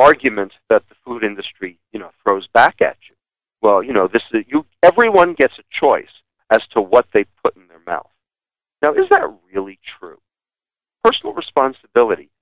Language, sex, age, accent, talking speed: English, male, 50-69, American, 170 wpm